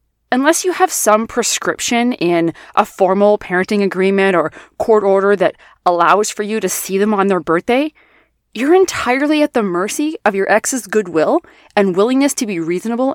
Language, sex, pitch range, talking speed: English, female, 180-250 Hz, 170 wpm